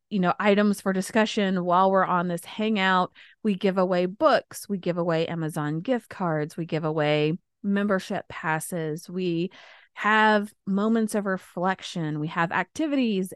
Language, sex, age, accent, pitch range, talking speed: English, female, 30-49, American, 160-210 Hz, 150 wpm